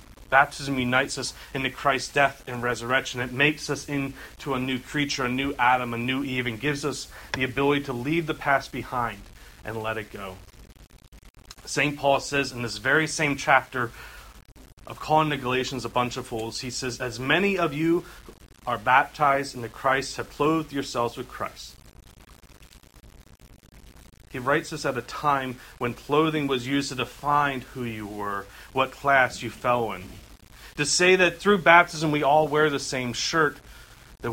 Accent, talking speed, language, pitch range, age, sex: American, 170 wpm, English, 120-150 Hz, 30-49, male